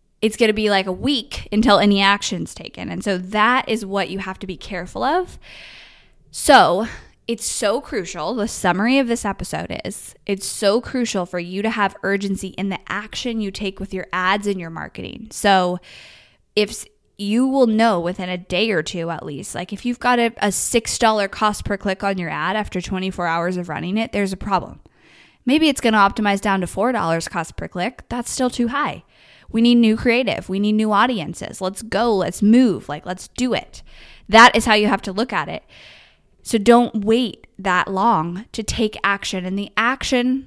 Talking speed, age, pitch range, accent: 200 wpm, 10-29, 185-230 Hz, American